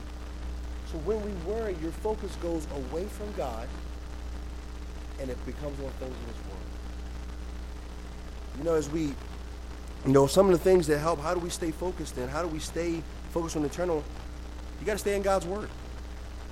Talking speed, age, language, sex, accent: 185 wpm, 30-49, English, male, American